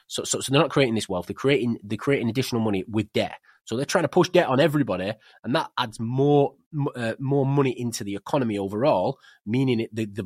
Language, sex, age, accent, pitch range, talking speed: English, male, 20-39, British, 110-150 Hz, 220 wpm